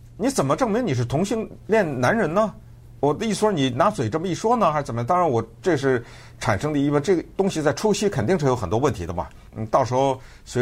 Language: Chinese